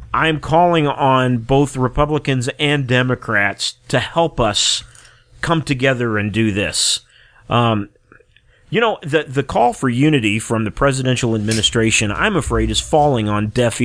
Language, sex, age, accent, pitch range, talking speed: English, male, 30-49, American, 110-130 Hz, 145 wpm